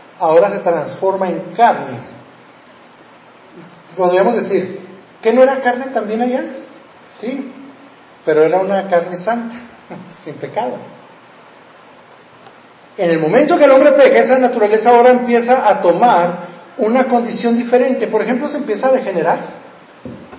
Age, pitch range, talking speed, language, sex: 40-59, 190-250 Hz, 125 wpm, Spanish, male